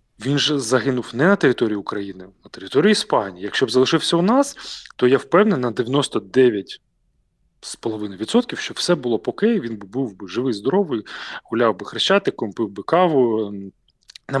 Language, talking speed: Ukrainian, 155 wpm